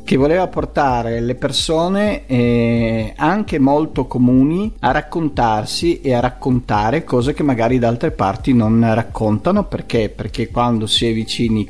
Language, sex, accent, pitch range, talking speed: Italian, male, native, 110-140 Hz, 145 wpm